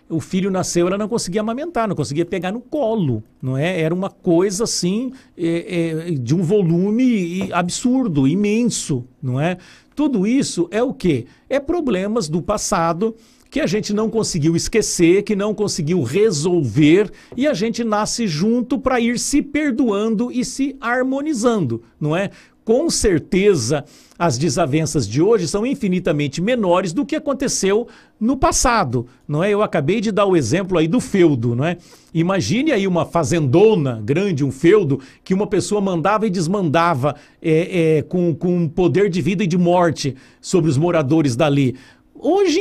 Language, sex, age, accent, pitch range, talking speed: Portuguese, male, 60-79, Brazilian, 165-240 Hz, 150 wpm